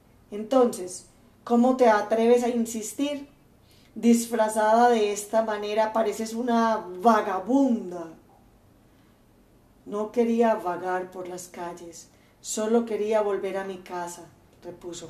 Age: 40-59